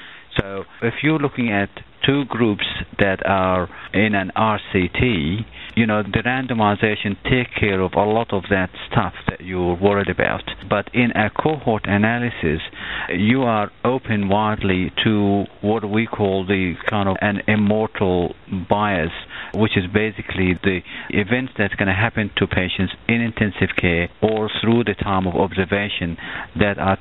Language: English